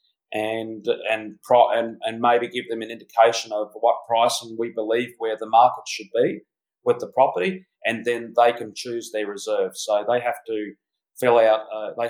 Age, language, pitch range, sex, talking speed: 40-59, English, 110-155 Hz, male, 190 wpm